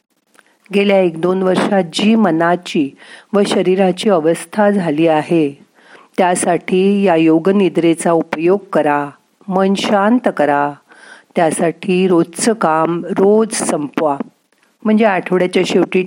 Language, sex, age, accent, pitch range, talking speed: Marathi, female, 50-69, native, 155-205 Hz, 105 wpm